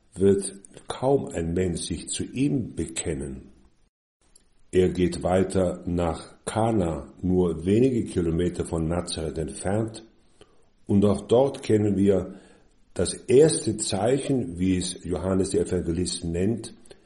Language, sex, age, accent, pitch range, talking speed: German, male, 50-69, German, 85-110 Hz, 115 wpm